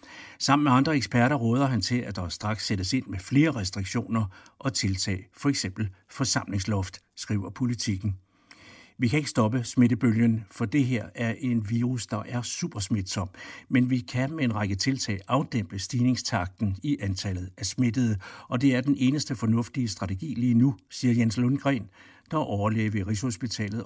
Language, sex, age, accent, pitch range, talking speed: Danish, male, 60-79, native, 105-130 Hz, 165 wpm